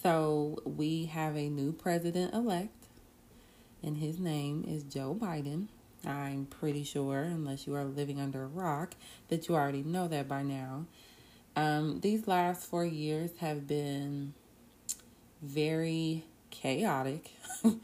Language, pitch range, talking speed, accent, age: English, 140-165 Hz, 130 wpm, American, 30-49